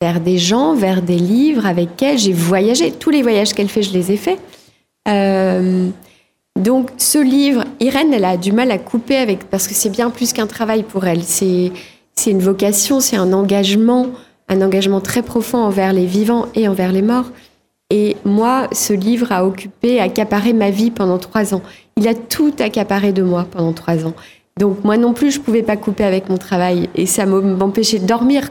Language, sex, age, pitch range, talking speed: French, female, 20-39, 190-235 Hz, 205 wpm